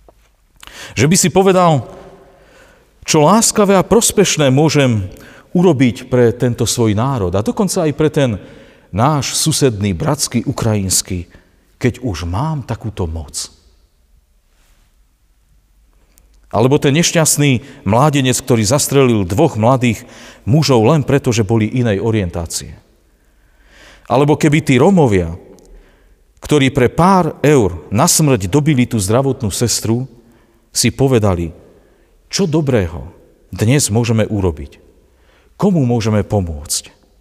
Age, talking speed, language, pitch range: 40-59, 105 wpm, Slovak, 85-135 Hz